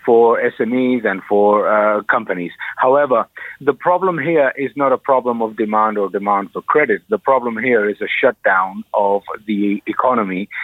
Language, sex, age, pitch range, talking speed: English, male, 50-69, 105-135 Hz, 165 wpm